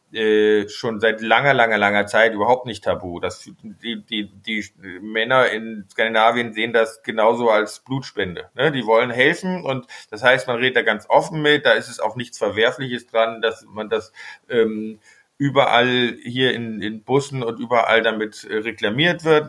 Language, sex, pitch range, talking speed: German, male, 110-130 Hz, 170 wpm